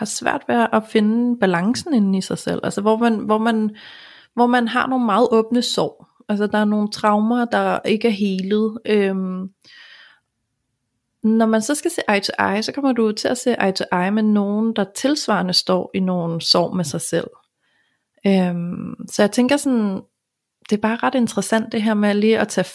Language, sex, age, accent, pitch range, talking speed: Danish, female, 30-49, native, 185-220 Hz, 205 wpm